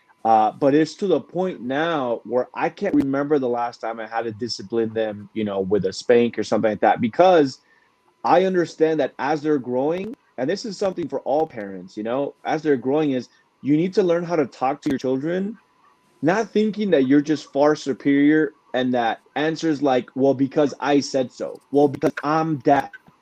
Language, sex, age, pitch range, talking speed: English, male, 30-49, 125-160 Hz, 200 wpm